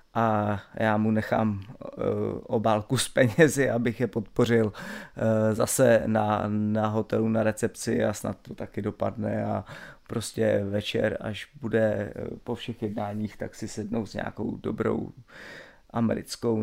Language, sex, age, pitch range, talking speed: Czech, male, 30-49, 110-135 Hz, 130 wpm